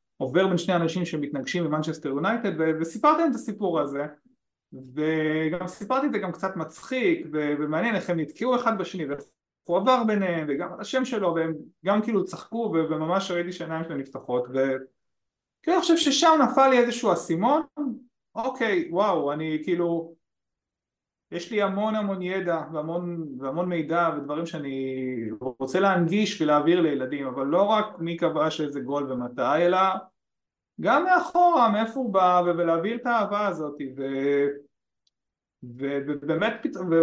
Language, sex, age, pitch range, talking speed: Hebrew, male, 30-49, 150-225 Hz, 140 wpm